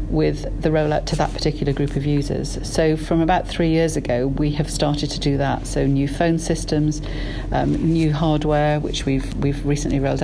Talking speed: 195 wpm